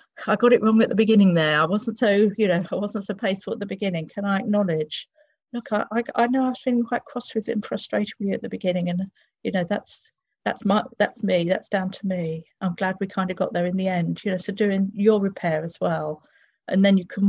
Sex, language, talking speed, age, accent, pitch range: female, English, 260 wpm, 50-69, British, 170-215 Hz